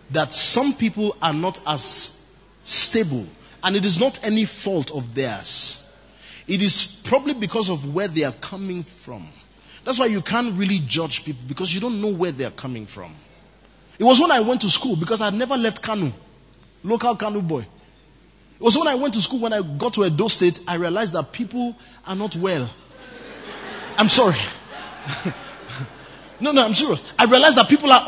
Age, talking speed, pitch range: 30-49, 190 wpm, 180-245 Hz